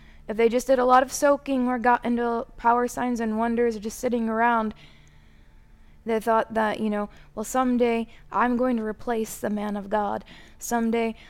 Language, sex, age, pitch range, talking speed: English, female, 20-39, 195-240 Hz, 180 wpm